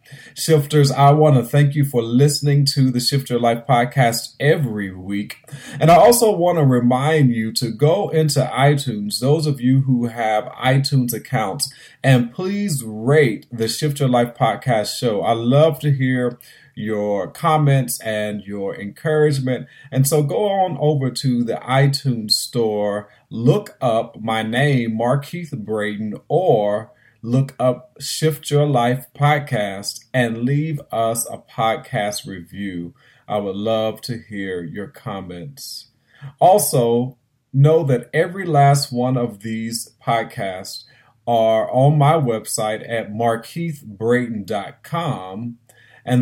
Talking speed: 130 wpm